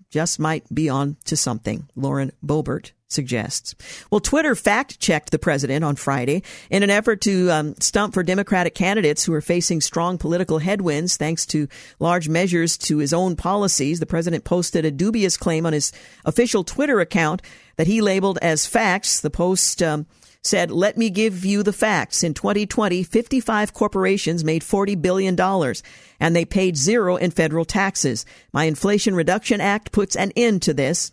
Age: 50-69